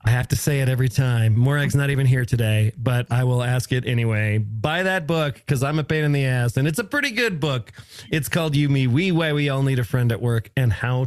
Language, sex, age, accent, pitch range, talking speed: English, male, 40-59, American, 120-150 Hz, 265 wpm